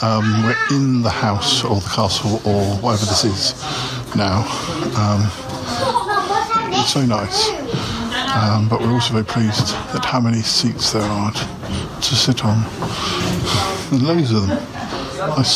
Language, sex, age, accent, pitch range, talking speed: English, male, 50-69, British, 110-130 Hz, 145 wpm